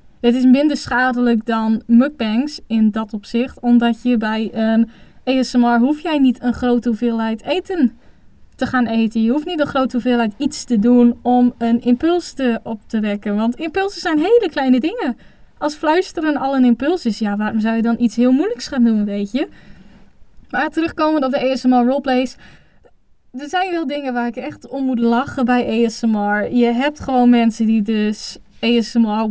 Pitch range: 225-270 Hz